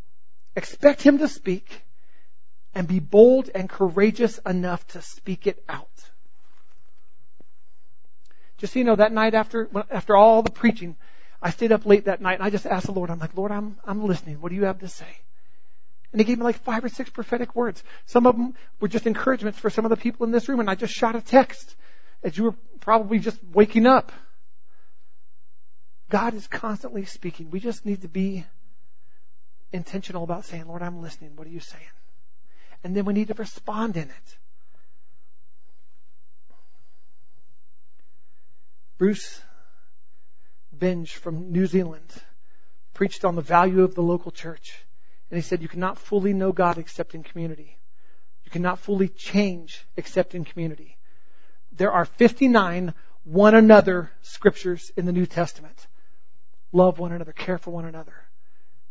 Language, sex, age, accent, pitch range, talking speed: English, male, 40-59, American, 175-225 Hz, 165 wpm